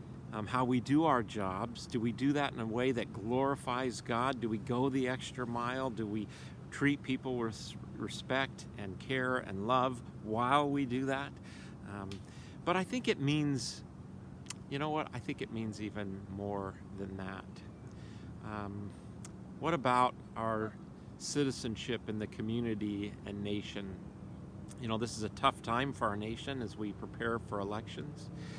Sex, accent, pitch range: male, American, 110-140 Hz